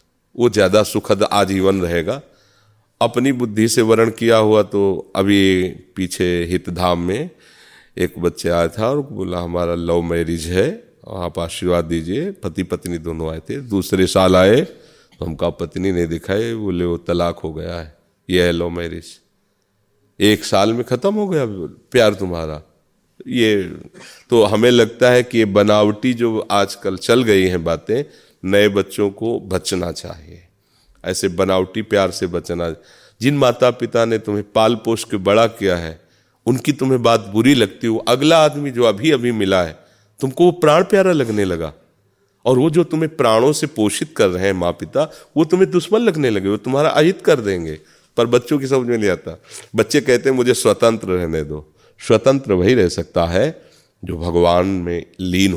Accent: native